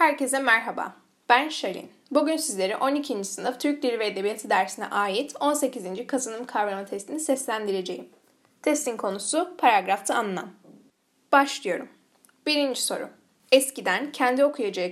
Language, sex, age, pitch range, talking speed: Turkish, female, 10-29, 205-275 Hz, 115 wpm